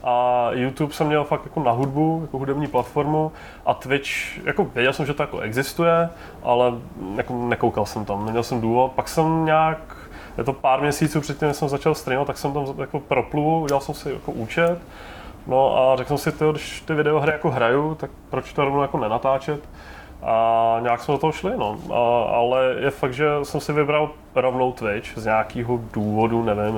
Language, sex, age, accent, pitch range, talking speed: Czech, male, 20-39, native, 110-145 Hz, 195 wpm